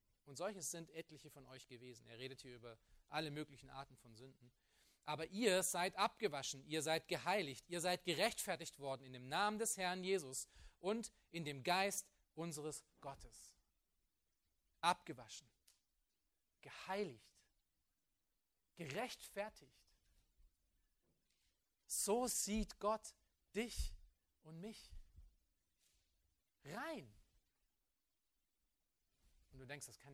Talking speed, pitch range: 105 wpm, 115-160 Hz